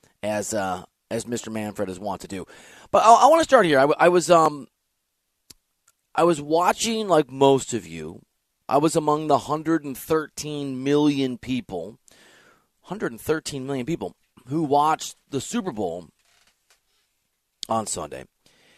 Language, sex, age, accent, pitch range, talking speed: English, male, 30-49, American, 120-145 Hz, 140 wpm